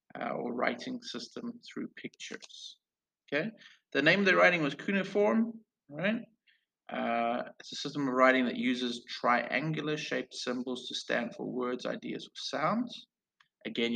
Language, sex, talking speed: English, male, 140 wpm